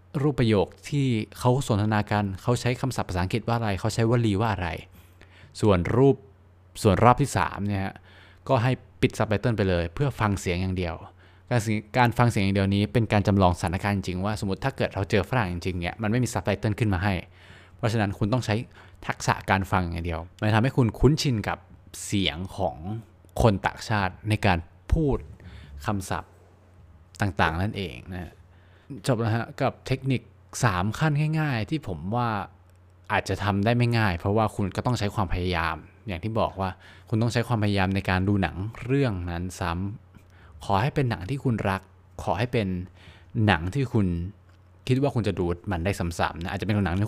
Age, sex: 20-39, male